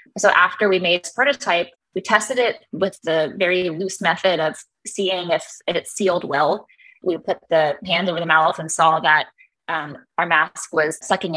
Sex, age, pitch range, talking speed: female, 20-39, 160-195 Hz, 185 wpm